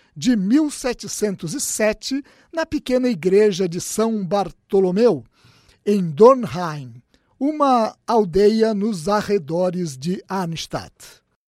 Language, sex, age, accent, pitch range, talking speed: Portuguese, male, 60-79, Brazilian, 190-260 Hz, 85 wpm